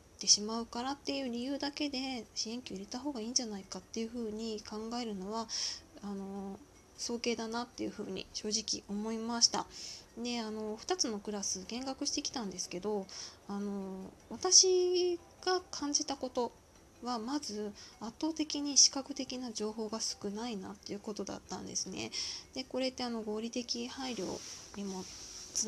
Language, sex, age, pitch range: Japanese, female, 20-39, 210-270 Hz